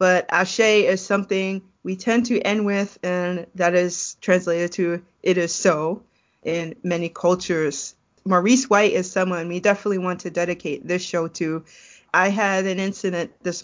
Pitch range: 170-200 Hz